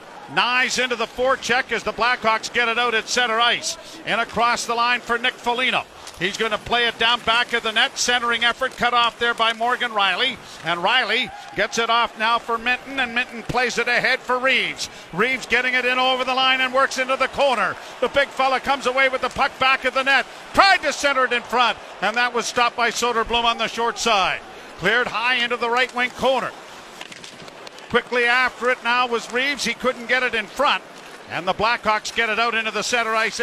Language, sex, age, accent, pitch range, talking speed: English, male, 50-69, American, 220-250 Hz, 220 wpm